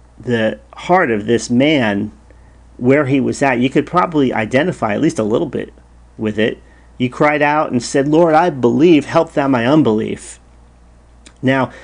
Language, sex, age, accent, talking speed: English, male, 40-59, American, 165 wpm